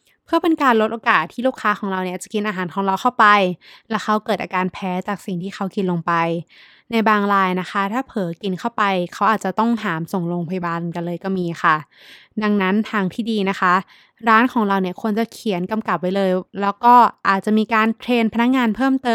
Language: Thai